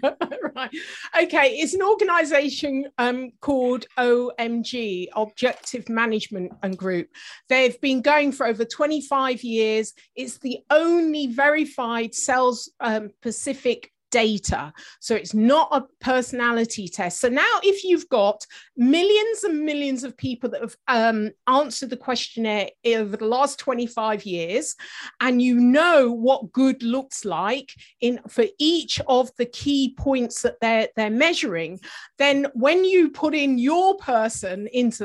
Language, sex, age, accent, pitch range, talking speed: English, female, 40-59, British, 230-285 Hz, 135 wpm